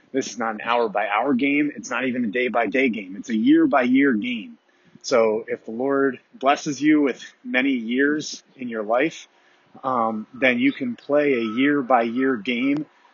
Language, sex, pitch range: English, male, 120-160 Hz